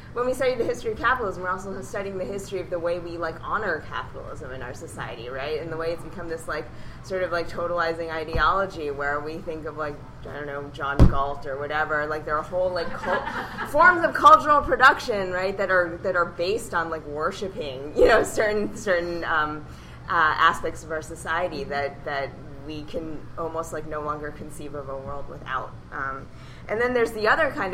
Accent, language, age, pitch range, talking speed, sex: American, English, 20-39, 150-180 Hz, 210 wpm, female